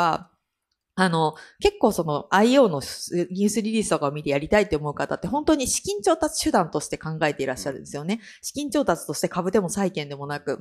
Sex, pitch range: female, 155-230 Hz